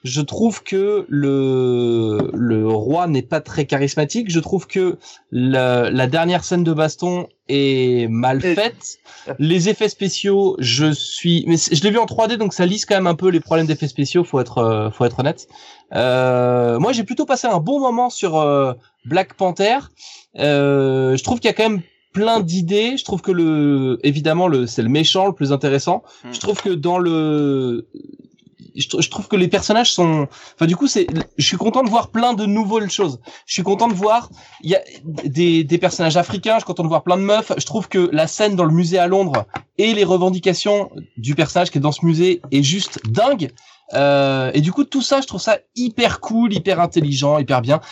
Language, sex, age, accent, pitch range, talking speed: French, male, 20-39, French, 140-200 Hz, 210 wpm